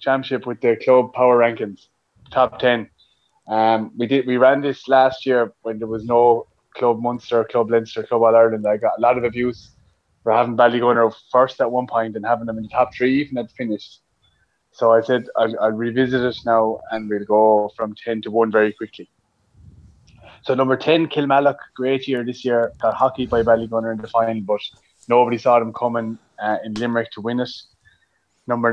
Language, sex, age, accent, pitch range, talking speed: English, male, 20-39, Irish, 110-125 Hz, 195 wpm